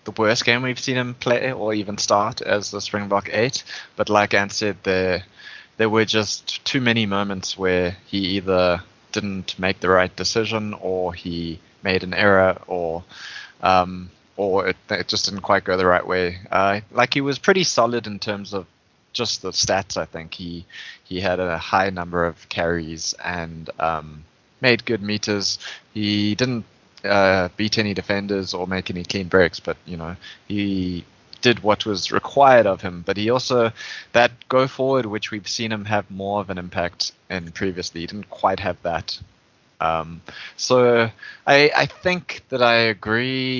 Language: English